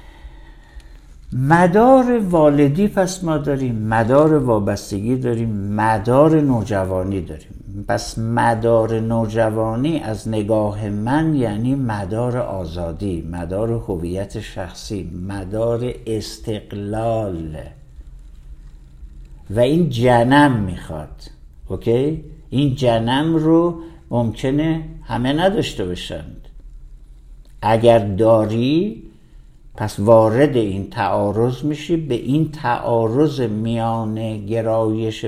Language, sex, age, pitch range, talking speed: Persian, male, 60-79, 100-125 Hz, 85 wpm